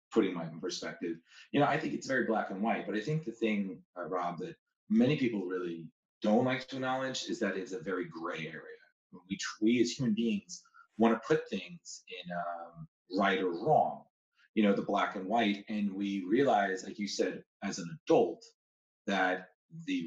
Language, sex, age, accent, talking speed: English, male, 30-49, American, 195 wpm